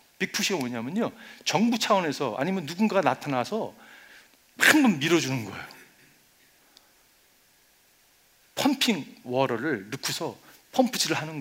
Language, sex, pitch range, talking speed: English, male, 120-180 Hz, 85 wpm